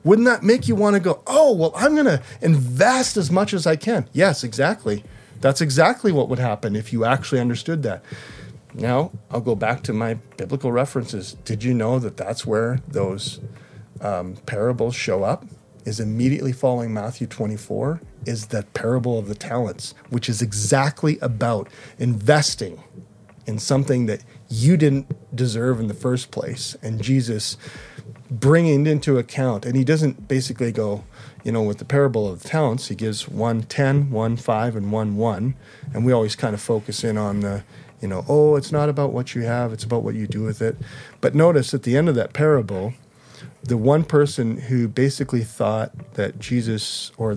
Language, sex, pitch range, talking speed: English, male, 110-145 Hz, 180 wpm